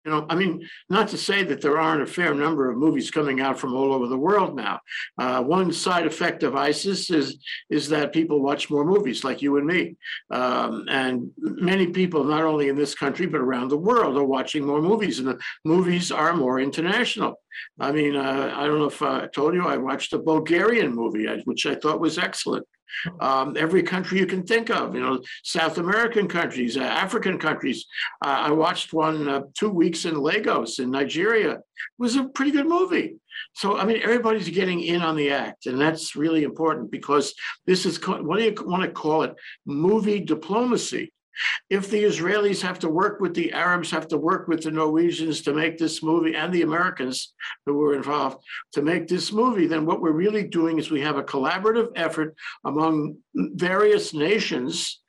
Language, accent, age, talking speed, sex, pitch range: English, American, 60-79, 200 wpm, male, 150-190 Hz